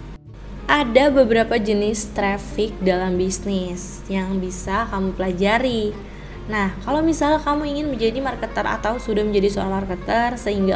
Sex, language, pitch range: female, Indonesian, 195-255 Hz